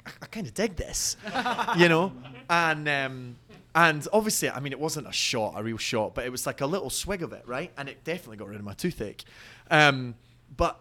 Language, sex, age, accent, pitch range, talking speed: English, male, 30-49, British, 115-145 Hz, 220 wpm